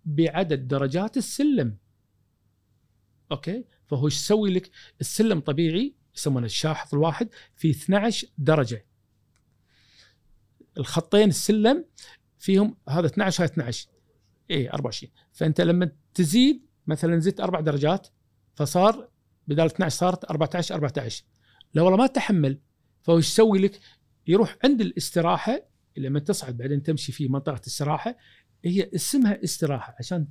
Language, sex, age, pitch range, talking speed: Arabic, male, 50-69, 125-190 Hz, 115 wpm